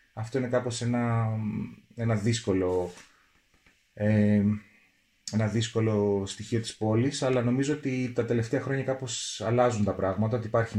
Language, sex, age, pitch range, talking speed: Greek, male, 30-49, 100-115 Hz, 135 wpm